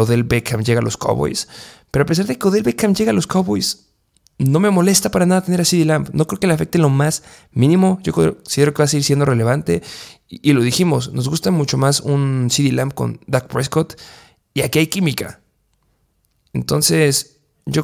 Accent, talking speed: Mexican, 210 wpm